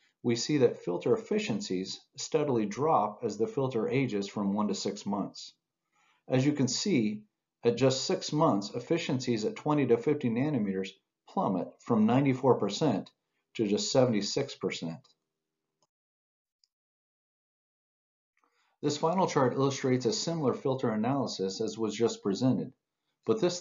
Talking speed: 125 wpm